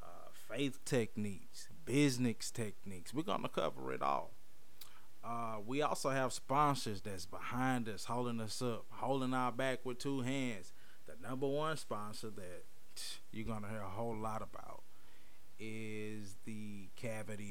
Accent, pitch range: American, 105-120 Hz